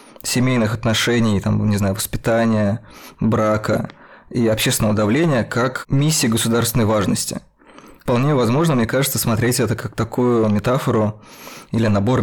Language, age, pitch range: Russian, 20-39, 110-125 Hz